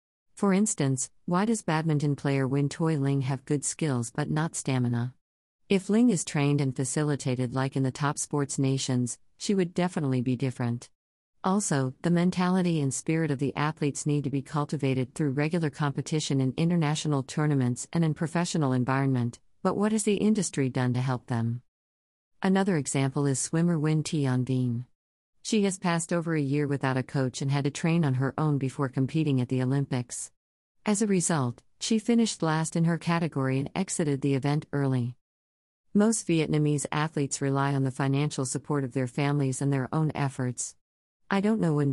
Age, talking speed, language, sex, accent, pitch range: 50-69, 175 wpm, English, female, American, 130-165 Hz